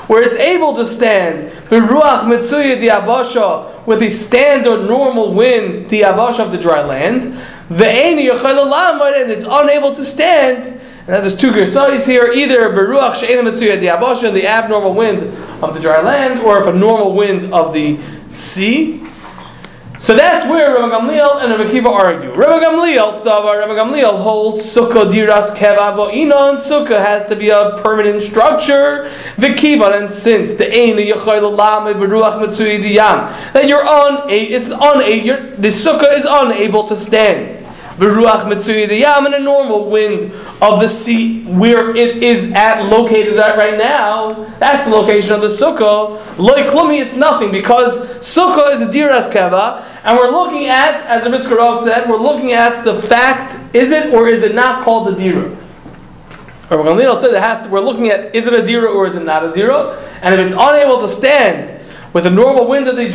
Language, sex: English, male